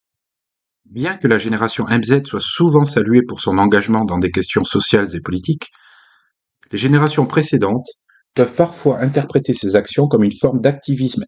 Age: 40-59